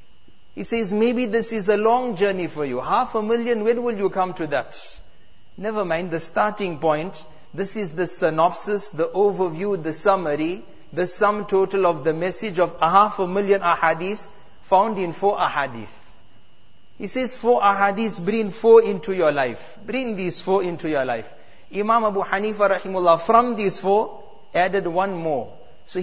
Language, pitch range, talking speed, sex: English, 160-205 Hz, 175 wpm, male